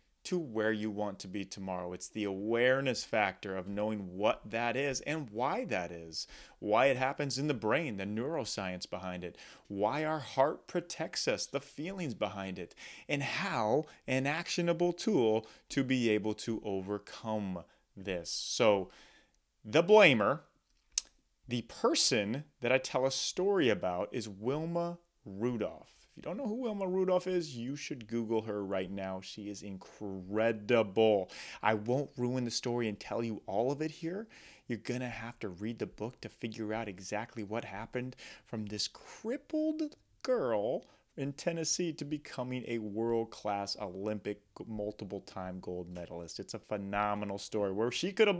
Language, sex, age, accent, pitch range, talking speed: English, male, 30-49, American, 105-145 Hz, 160 wpm